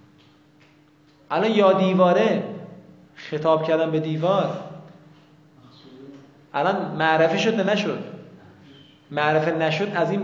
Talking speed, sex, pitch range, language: 90 wpm, male, 150-185 Hz, Persian